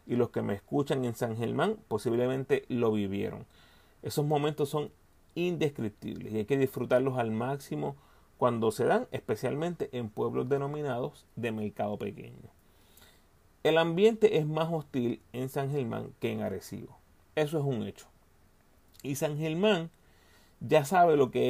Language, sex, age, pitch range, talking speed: Spanish, male, 30-49, 105-150 Hz, 150 wpm